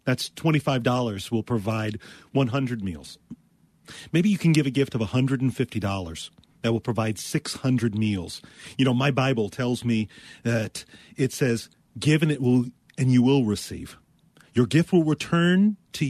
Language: English